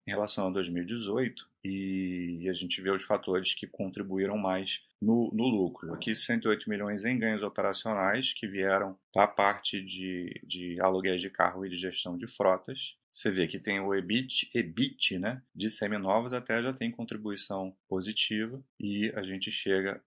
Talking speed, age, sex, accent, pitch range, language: 165 wpm, 30-49, male, Brazilian, 95-115 Hz, Portuguese